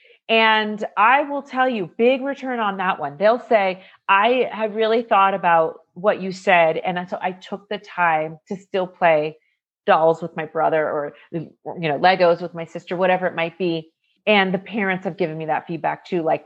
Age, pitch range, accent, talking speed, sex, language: 30-49, 170-220 Hz, American, 195 wpm, female, English